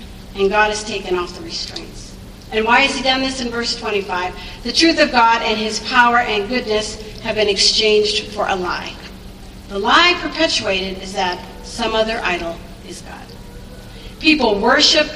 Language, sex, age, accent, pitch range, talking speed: English, female, 50-69, American, 195-235 Hz, 170 wpm